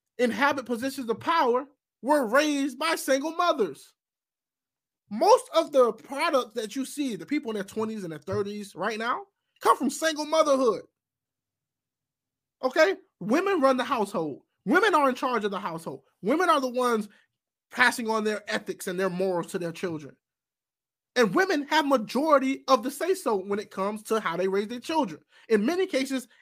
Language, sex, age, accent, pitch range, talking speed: English, male, 20-39, American, 190-270 Hz, 170 wpm